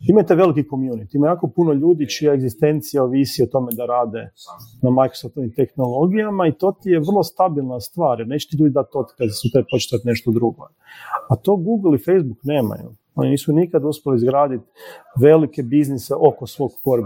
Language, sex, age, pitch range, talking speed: Croatian, male, 40-59, 125-170 Hz, 175 wpm